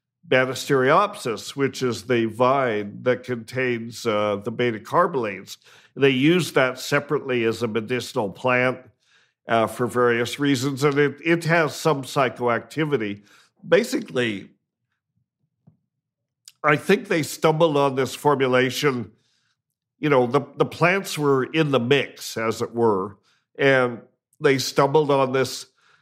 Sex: male